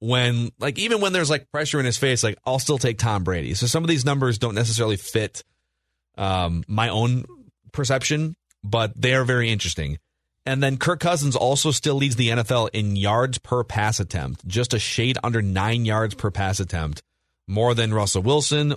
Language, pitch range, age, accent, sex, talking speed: English, 105-135 Hz, 30-49, American, male, 190 wpm